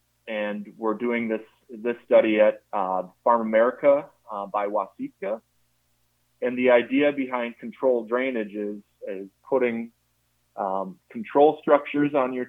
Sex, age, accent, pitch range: male, 30-49, American, 100-125 Hz